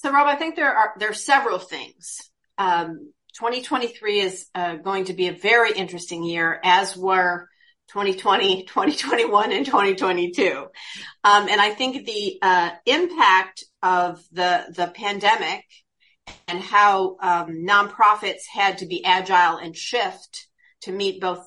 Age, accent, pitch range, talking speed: 50-69, American, 175-210 Hz, 145 wpm